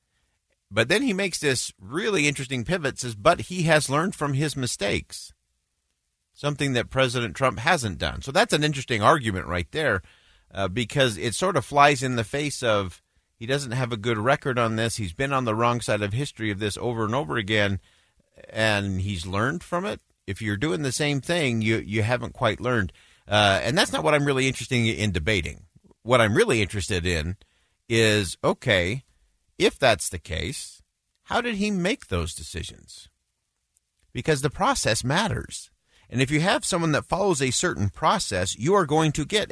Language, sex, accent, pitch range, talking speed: English, male, American, 90-140 Hz, 185 wpm